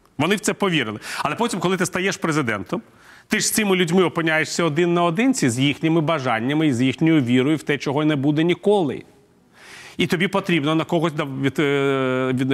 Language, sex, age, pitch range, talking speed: Ukrainian, male, 40-59, 140-185 Hz, 170 wpm